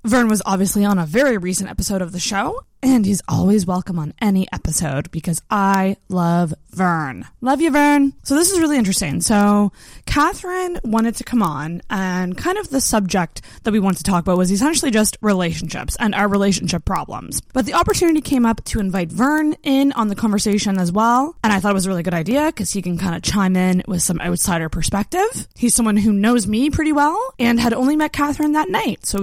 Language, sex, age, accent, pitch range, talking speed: English, female, 20-39, American, 180-260 Hz, 215 wpm